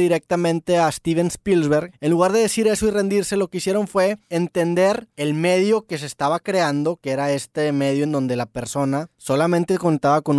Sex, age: male, 20-39